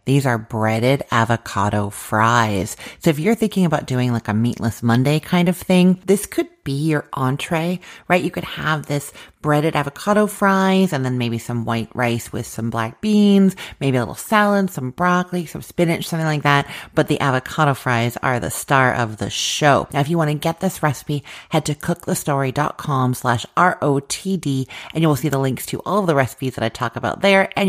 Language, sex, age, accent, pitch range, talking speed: English, female, 30-49, American, 120-165 Hz, 200 wpm